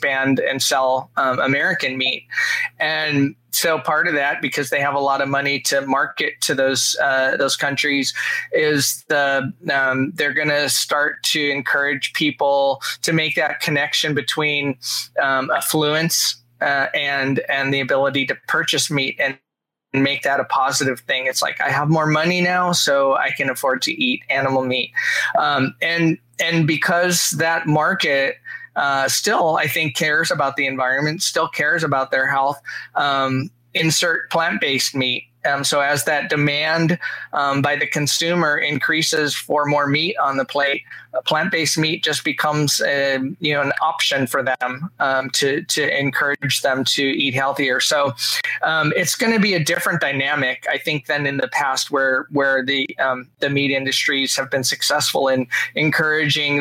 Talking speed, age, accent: 165 wpm, 20-39, American